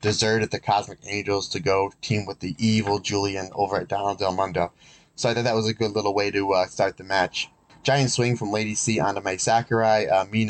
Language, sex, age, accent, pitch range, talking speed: English, male, 20-39, American, 100-115 Hz, 230 wpm